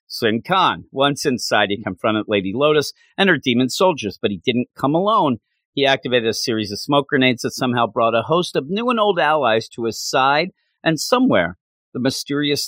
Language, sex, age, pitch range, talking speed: English, male, 40-59, 115-165 Hz, 195 wpm